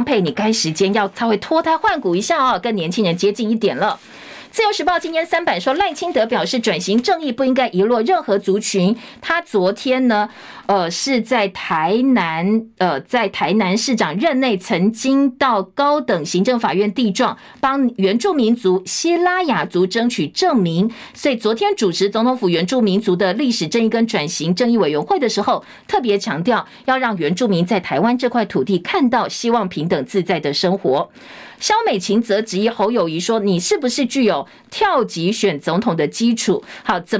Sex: female